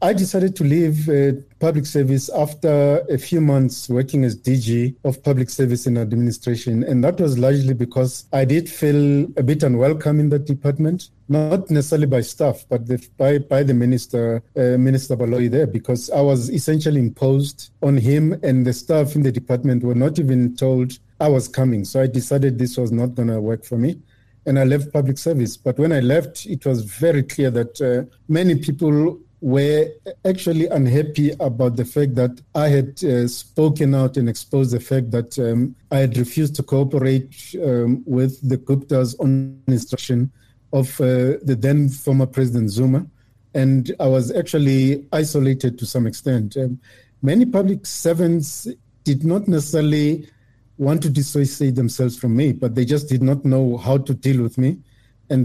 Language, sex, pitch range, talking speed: English, male, 125-145 Hz, 175 wpm